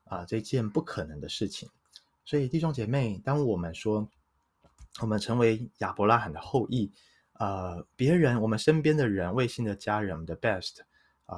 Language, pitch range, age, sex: Chinese, 90-115 Hz, 20-39, male